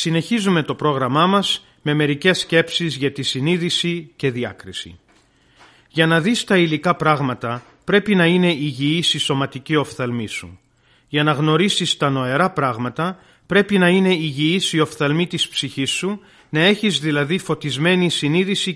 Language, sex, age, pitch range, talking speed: Greek, male, 40-59, 145-185 Hz, 145 wpm